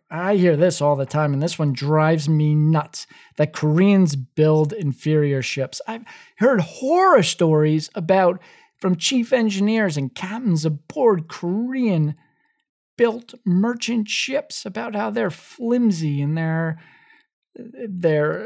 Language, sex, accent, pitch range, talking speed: English, male, American, 155-245 Hz, 125 wpm